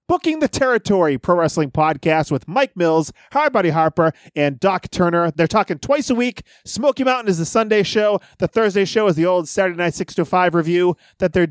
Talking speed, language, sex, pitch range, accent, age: 210 wpm, English, male, 155-210 Hz, American, 30-49